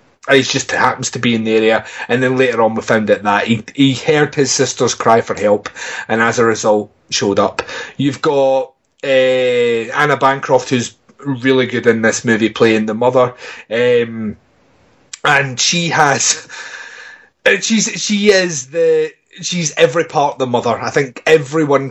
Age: 30-49